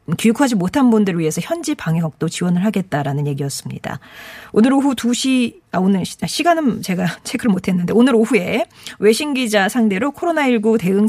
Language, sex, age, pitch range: Korean, female, 40-59, 175-245 Hz